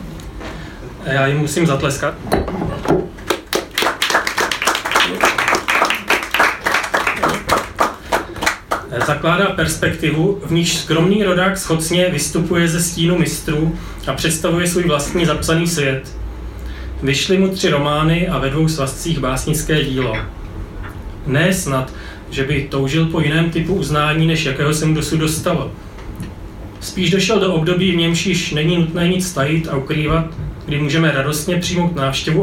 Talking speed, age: 120 wpm, 30-49